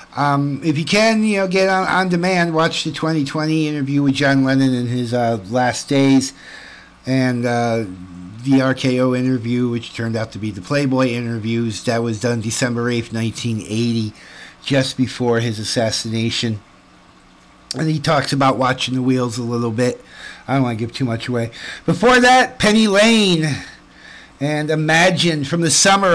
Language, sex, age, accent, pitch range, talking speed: English, male, 50-69, American, 125-160 Hz, 165 wpm